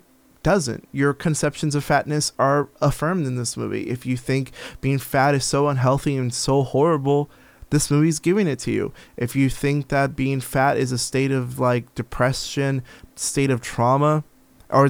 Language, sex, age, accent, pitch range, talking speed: English, male, 20-39, American, 130-175 Hz, 175 wpm